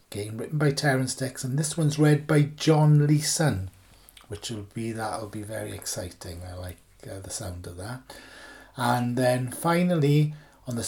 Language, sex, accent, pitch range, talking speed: English, male, British, 105-145 Hz, 170 wpm